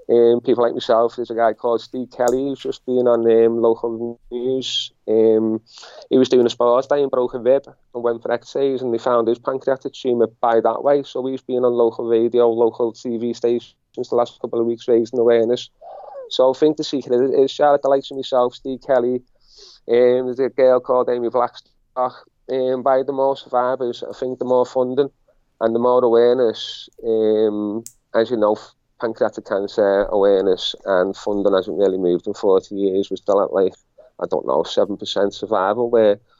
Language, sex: English, male